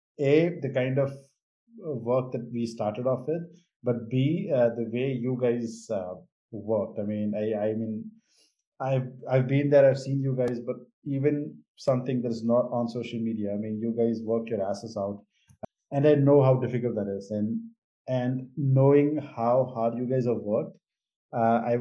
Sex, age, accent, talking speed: male, 20-39, Indian, 185 wpm